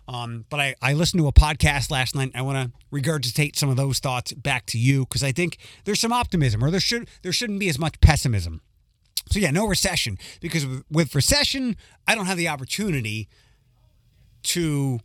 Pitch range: 120-160 Hz